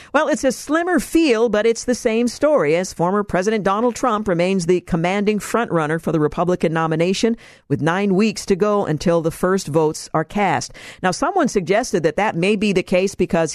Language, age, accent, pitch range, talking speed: English, 50-69, American, 165-215 Hz, 195 wpm